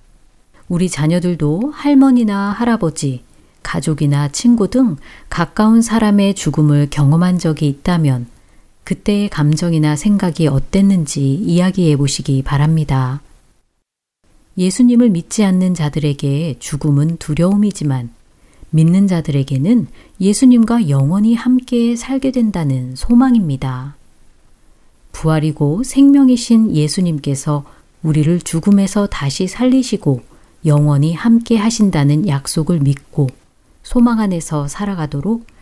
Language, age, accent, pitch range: Korean, 40-59, native, 145-205 Hz